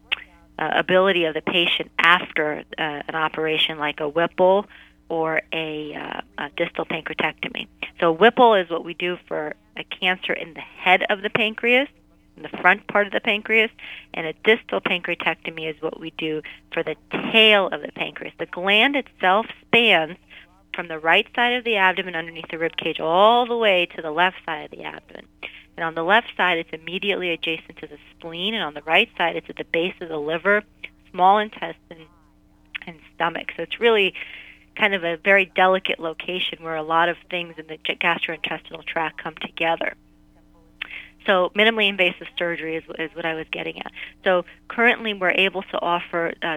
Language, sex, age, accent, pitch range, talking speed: English, female, 40-59, American, 160-195 Hz, 185 wpm